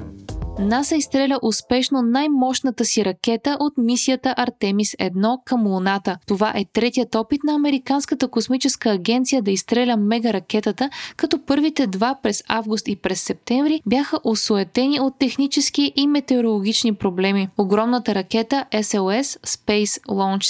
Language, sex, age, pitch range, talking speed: Bulgarian, female, 20-39, 200-265 Hz, 125 wpm